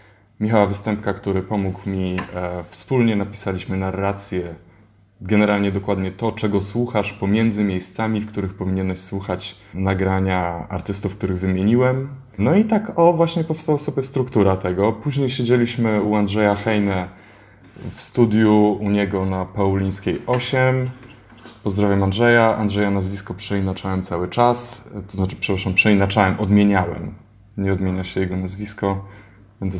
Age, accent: 20-39, native